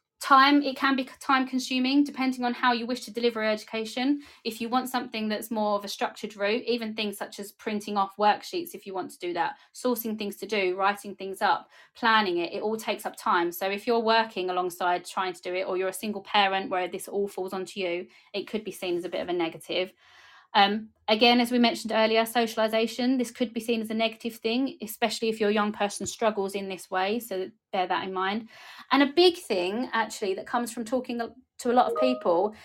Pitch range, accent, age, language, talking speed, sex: 190-235 Hz, British, 20-39, English, 230 wpm, female